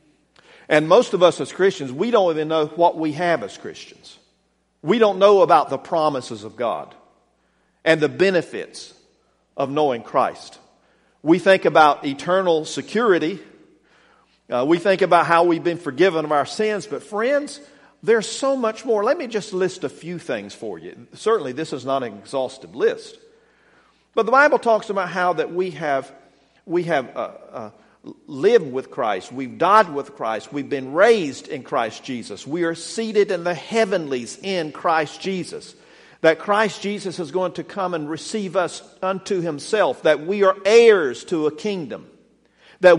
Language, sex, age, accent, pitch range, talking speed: English, male, 50-69, American, 155-220 Hz, 170 wpm